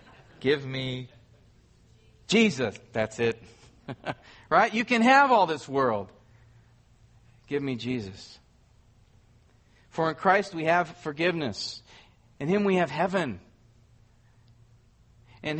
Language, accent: English, American